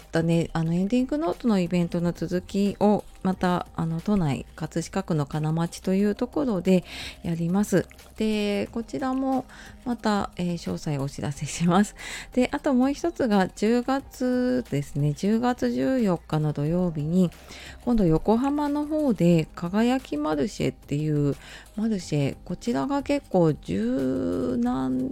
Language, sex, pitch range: Japanese, female, 150-205 Hz